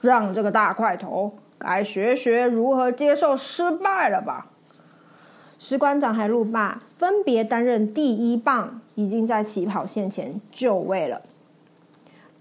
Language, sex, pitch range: Chinese, female, 225-290 Hz